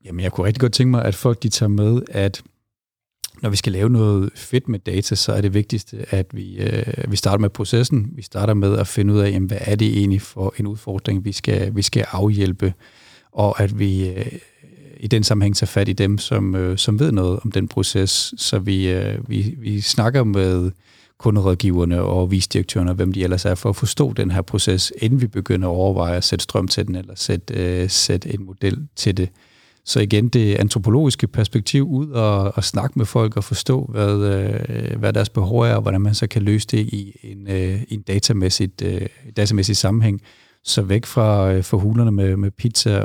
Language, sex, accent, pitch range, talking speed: Danish, male, native, 95-115 Hz, 205 wpm